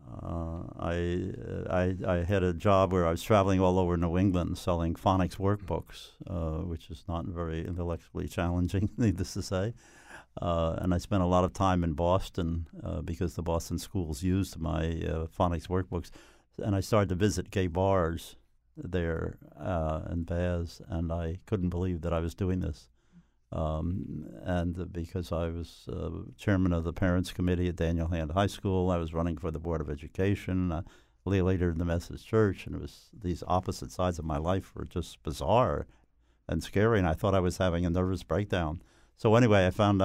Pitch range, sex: 85-95 Hz, male